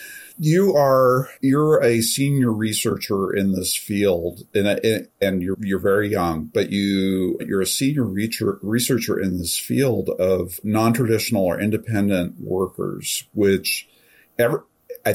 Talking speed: 130 wpm